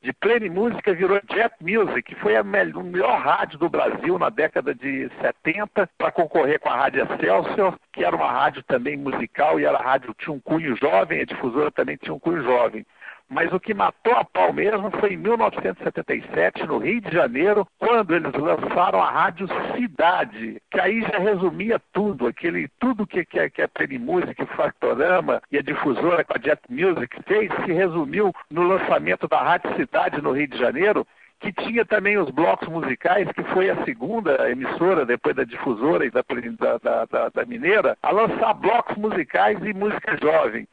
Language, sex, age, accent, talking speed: Portuguese, male, 60-79, Brazilian, 180 wpm